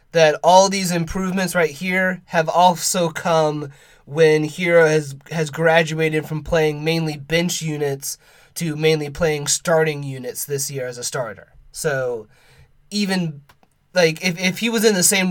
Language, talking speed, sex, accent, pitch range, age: English, 155 wpm, male, American, 150-175 Hz, 30-49